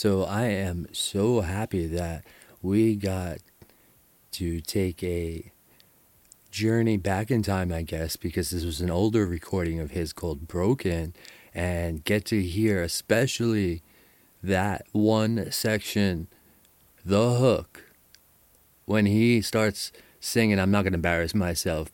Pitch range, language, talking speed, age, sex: 85-110 Hz, English, 130 wpm, 30-49, male